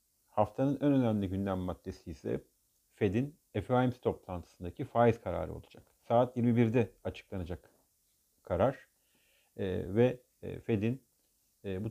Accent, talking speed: native, 95 wpm